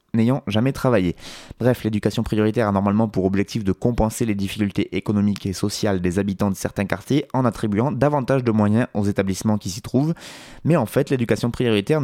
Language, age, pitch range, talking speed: French, 20-39, 100-125 Hz, 185 wpm